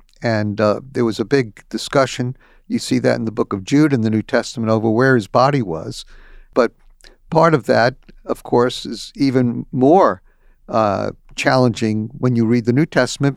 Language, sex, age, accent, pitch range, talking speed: English, male, 60-79, American, 115-140 Hz, 185 wpm